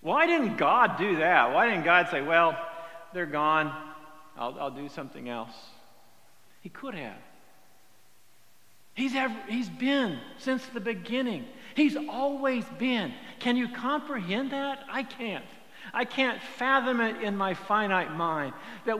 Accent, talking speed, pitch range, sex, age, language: American, 140 wpm, 175-250 Hz, male, 60-79, English